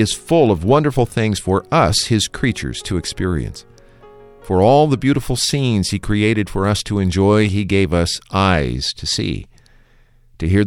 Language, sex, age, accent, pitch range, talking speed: English, male, 50-69, American, 95-120 Hz, 170 wpm